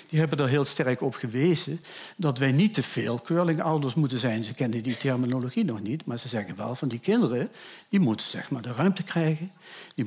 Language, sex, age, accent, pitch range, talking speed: Dutch, male, 60-79, Dutch, 125-160 Hz, 215 wpm